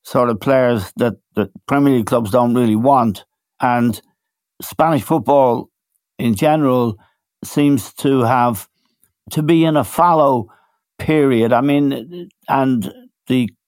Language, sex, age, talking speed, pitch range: English, male, 60-79, 125 wpm, 115-145 Hz